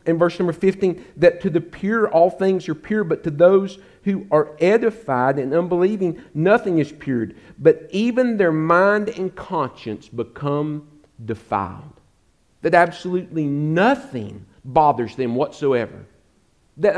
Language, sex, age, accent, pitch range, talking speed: English, male, 50-69, American, 160-215 Hz, 135 wpm